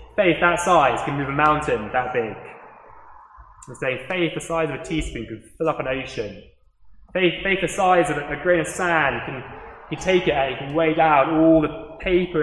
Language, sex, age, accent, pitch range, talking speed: English, male, 20-39, British, 135-175 Hz, 210 wpm